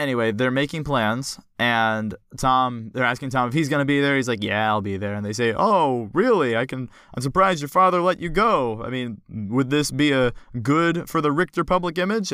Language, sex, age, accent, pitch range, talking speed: English, male, 20-39, American, 105-135 Hz, 230 wpm